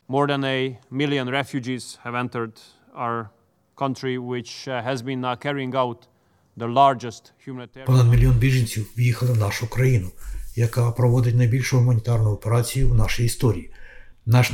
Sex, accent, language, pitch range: male, native, Ukrainian, 115-125 Hz